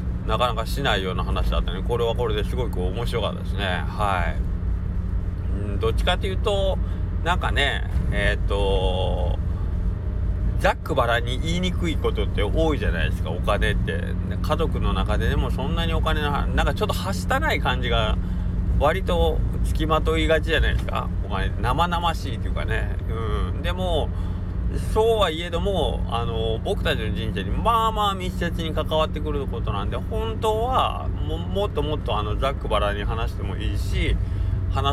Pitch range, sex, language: 90-100 Hz, male, Japanese